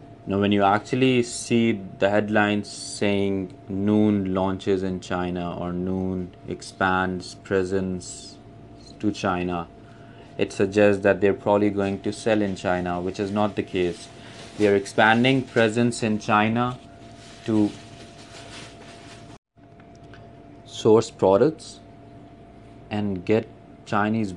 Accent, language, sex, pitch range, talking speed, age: Indian, English, male, 95-110 Hz, 110 wpm, 30-49